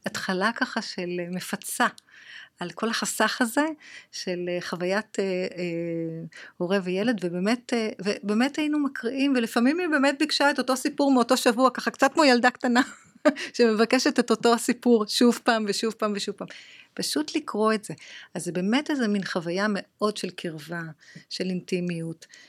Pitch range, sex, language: 185-235 Hz, female, Hebrew